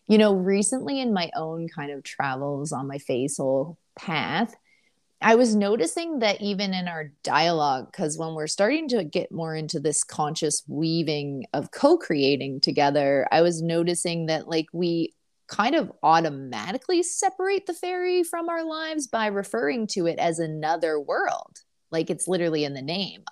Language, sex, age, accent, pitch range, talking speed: English, female, 30-49, American, 145-205 Hz, 160 wpm